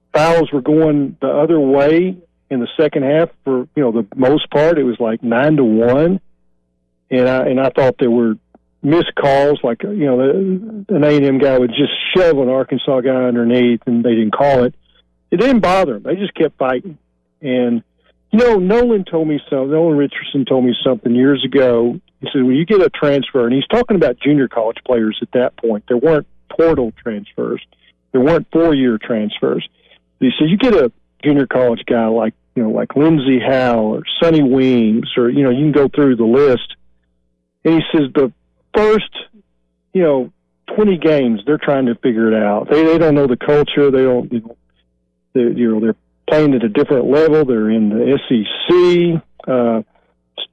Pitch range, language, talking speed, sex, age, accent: 115-150 Hz, English, 195 wpm, male, 50-69, American